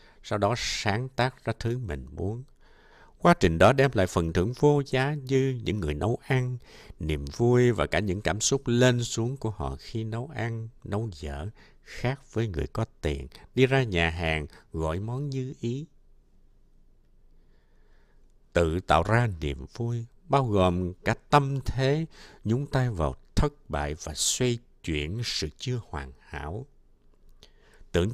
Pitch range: 85-130 Hz